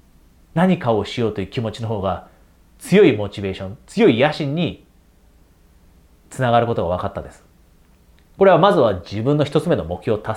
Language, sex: Japanese, male